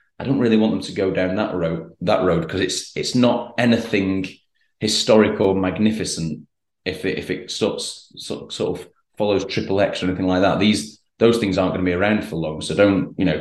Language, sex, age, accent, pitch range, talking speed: English, male, 30-49, British, 95-110 Hz, 225 wpm